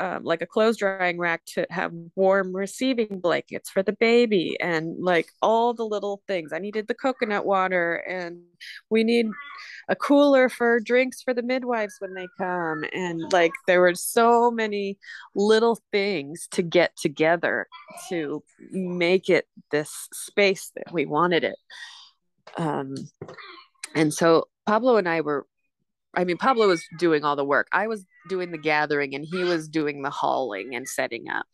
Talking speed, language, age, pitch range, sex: 165 wpm, English, 20-39, 165-240 Hz, female